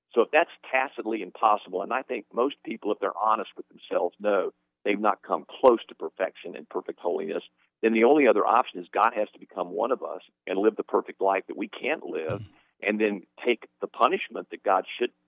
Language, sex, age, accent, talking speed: English, male, 50-69, American, 215 wpm